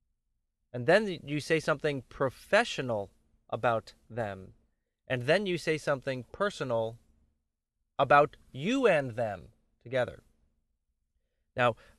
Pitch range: 115-150 Hz